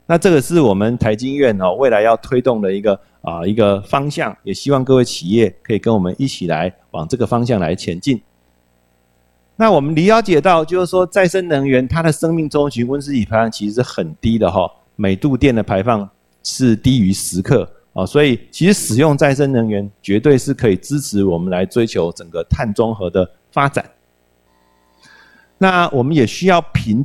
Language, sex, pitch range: Chinese, male, 95-140 Hz